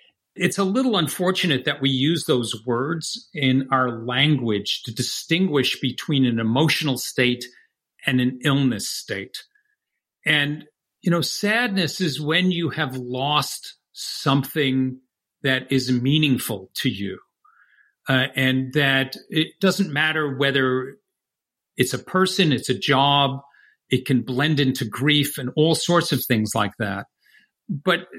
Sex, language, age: male, English, 50-69